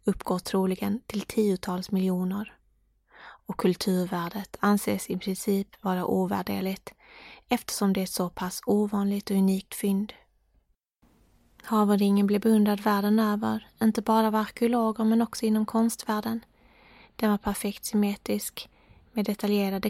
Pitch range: 195-215 Hz